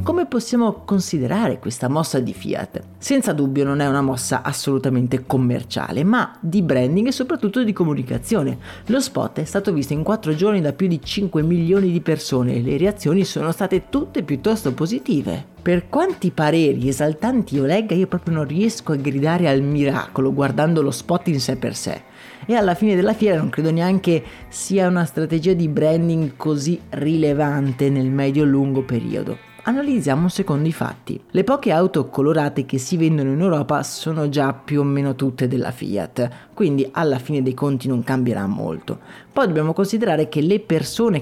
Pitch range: 140-185 Hz